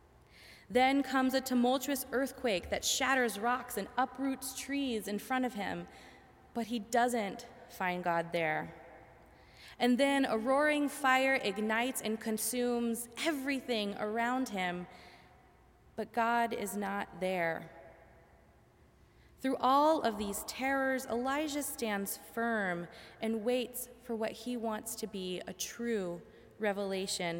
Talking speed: 125 wpm